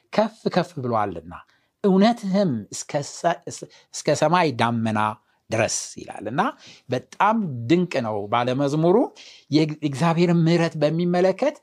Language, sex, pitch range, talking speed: Amharic, male, 135-195 Hz, 90 wpm